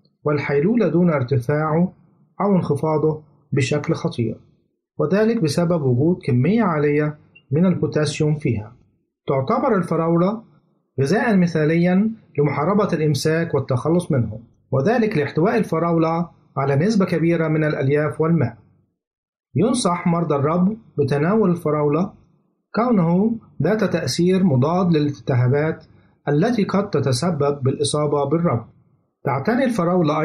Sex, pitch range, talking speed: male, 145-180 Hz, 95 wpm